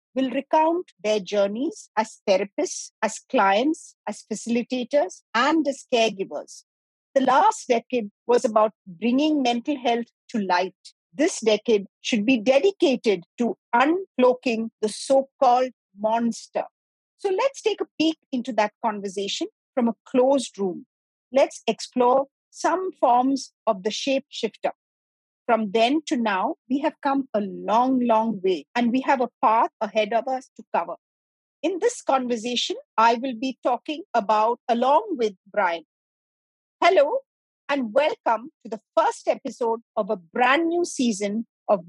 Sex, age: female, 50-69